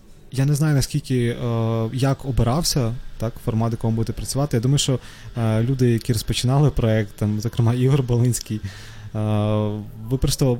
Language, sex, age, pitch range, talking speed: Ukrainian, male, 20-39, 105-125 Hz, 125 wpm